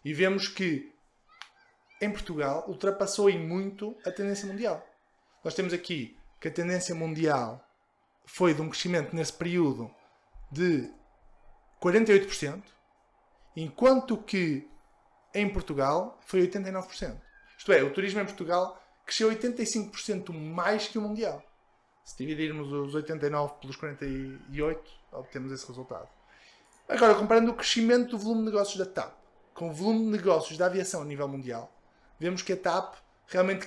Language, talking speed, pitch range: Portuguese, 140 wpm, 160-205 Hz